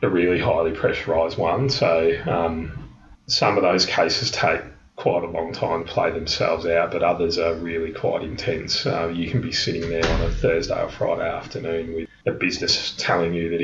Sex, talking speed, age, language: male, 195 wpm, 30-49, English